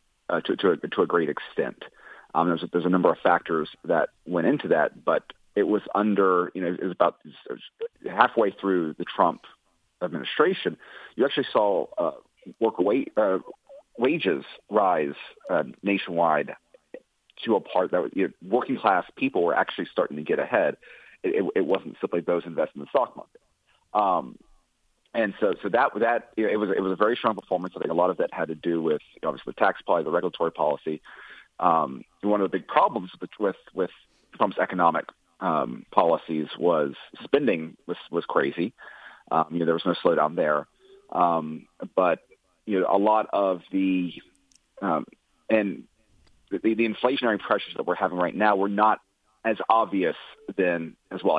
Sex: male